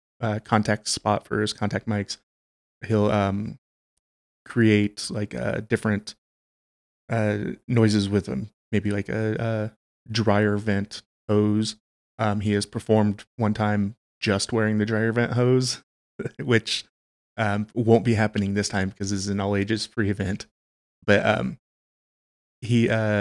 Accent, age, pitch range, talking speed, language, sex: American, 20-39, 100-110 Hz, 135 wpm, English, male